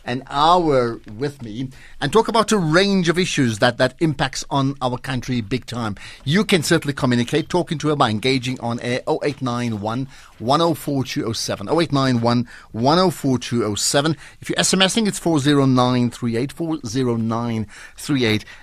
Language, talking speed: English, 115 wpm